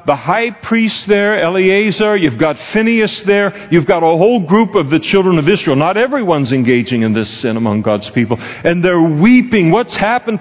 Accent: American